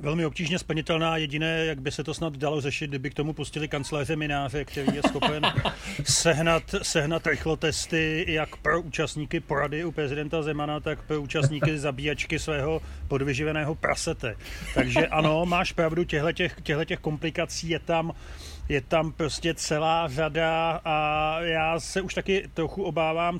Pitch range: 150-170 Hz